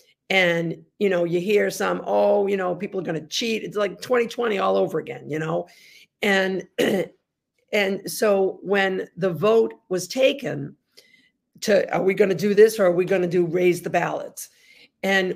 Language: English